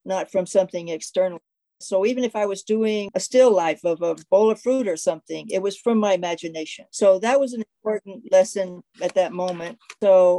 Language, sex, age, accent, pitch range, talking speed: English, female, 60-79, American, 170-200 Hz, 200 wpm